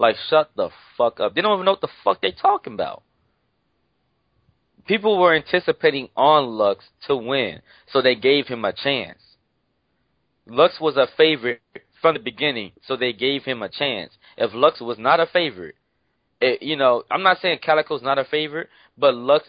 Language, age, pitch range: English, 20-39, 120-155 Hz